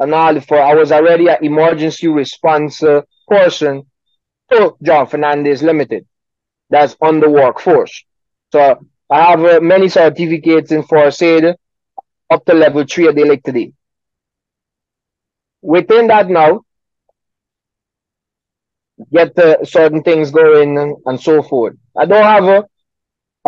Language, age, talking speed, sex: English, 30-49, 125 wpm, male